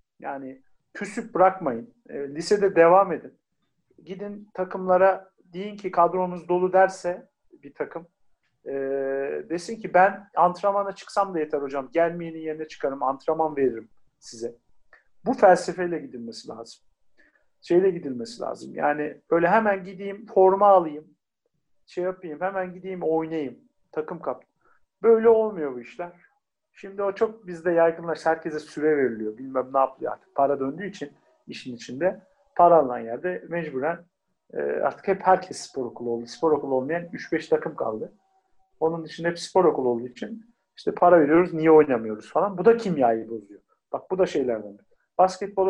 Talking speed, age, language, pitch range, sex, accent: 145 wpm, 50-69, English, 150-200 Hz, male, Turkish